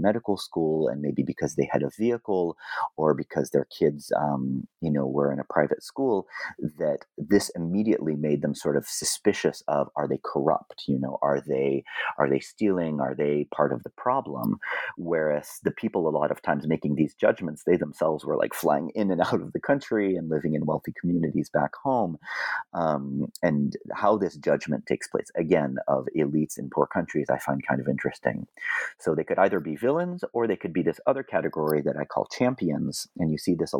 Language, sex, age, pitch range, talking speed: English, male, 30-49, 75-100 Hz, 200 wpm